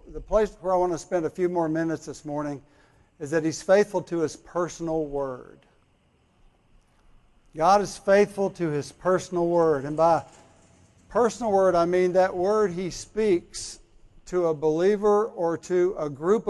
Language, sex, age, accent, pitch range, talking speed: English, male, 60-79, American, 155-195 Hz, 165 wpm